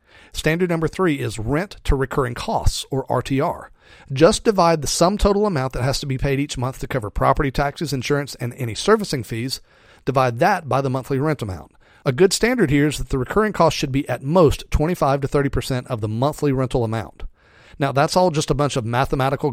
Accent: American